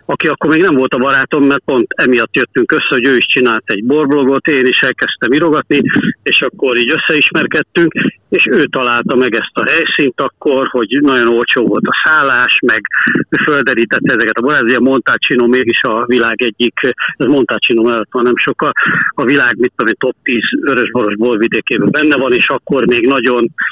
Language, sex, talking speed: Hungarian, male, 180 wpm